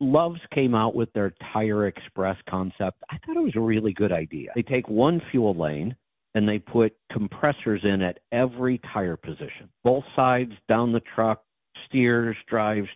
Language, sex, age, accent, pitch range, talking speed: English, male, 50-69, American, 95-125 Hz, 170 wpm